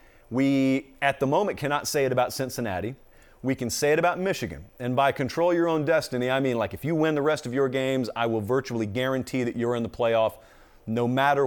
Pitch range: 115-150 Hz